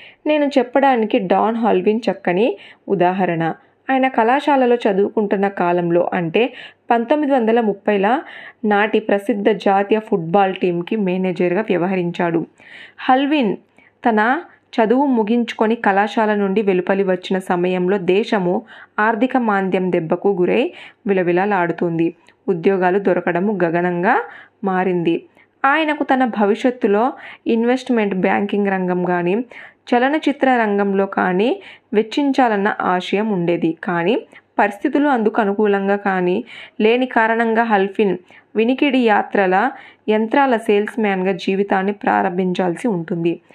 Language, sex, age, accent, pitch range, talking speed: Telugu, female, 20-39, native, 185-235 Hz, 90 wpm